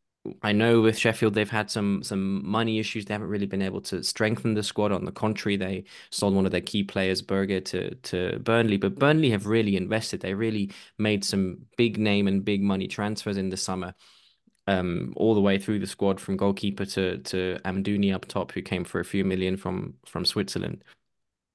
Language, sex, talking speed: English, male, 205 wpm